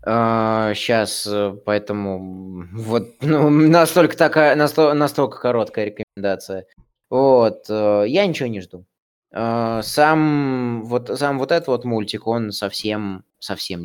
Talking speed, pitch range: 105 wpm, 105-135 Hz